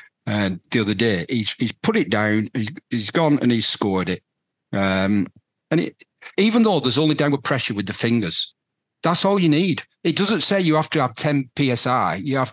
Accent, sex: British, male